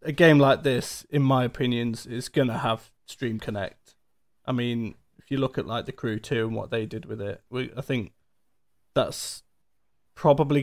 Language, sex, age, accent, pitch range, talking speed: English, male, 20-39, British, 120-135 Hz, 185 wpm